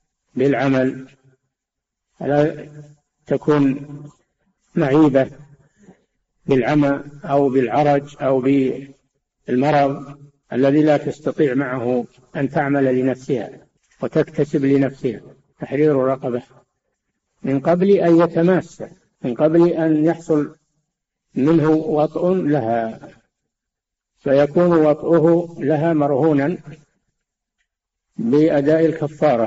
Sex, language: male, Arabic